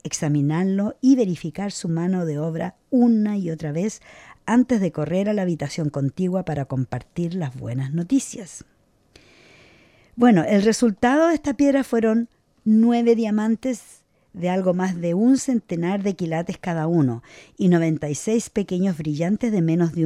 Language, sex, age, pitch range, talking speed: English, female, 50-69, 155-215 Hz, 145 wpm